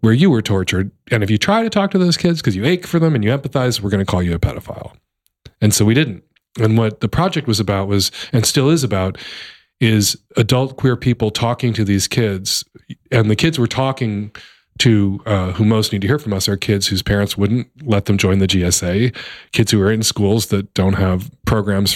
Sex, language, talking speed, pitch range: male, English, 225 wpm, 100-125 Hz